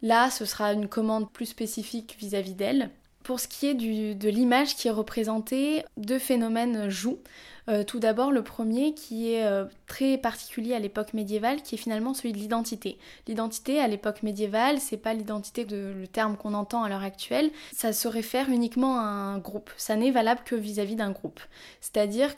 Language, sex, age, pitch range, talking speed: French, female, 10-29, 210-245 Hz, 195 wpm